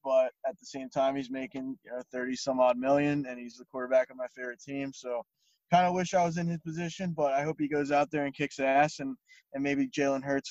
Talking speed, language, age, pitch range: 255 wpm, English, 20-39, 130-150 Hz